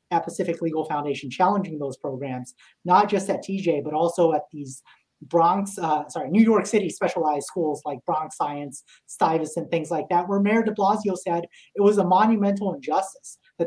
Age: 30-49